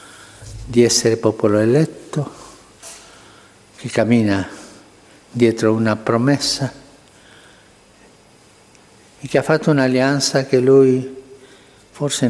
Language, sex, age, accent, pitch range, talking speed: Italian, male, 60-79, native, 110-135 Hz, 85 wpm